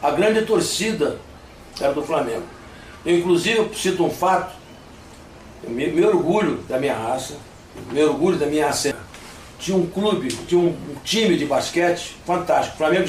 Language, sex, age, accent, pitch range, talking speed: Portuguese, male, 60-79, Brazilian, 150-185 Hz, 155 wpm